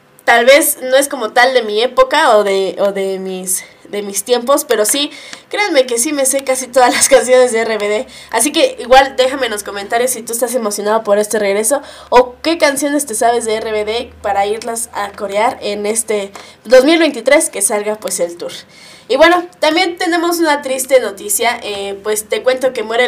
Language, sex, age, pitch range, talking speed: Spanish, female, 10-29, 220-280 Hz, 200 wpm